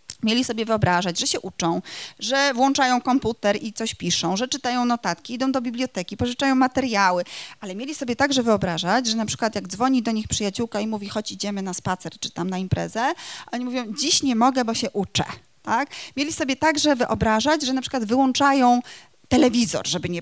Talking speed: 185 wpm